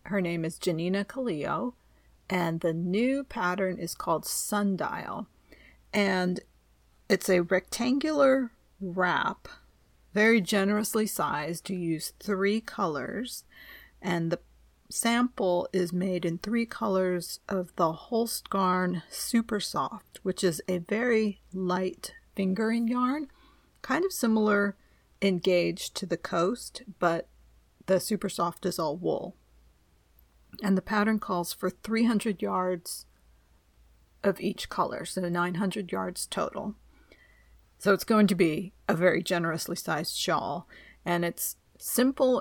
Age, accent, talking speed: 40-59, American, 120 wpm